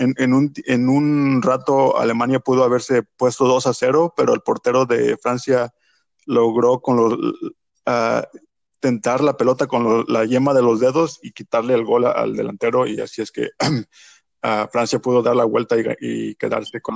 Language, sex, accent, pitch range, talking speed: Spanish, male, Mexican, 115-155 Hz, 185 wpm